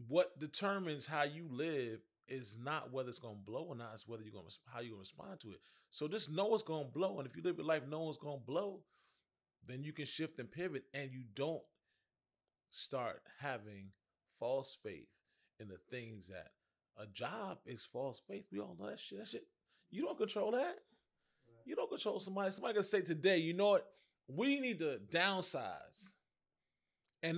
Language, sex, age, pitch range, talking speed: English, male, 20-39, 115-170 Hz, 195 wpm